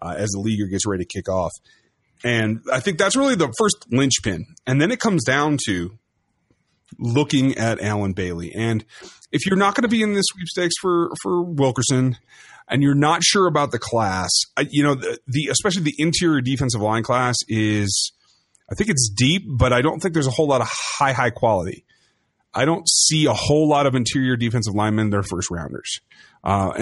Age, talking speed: 30-49, 200 wpm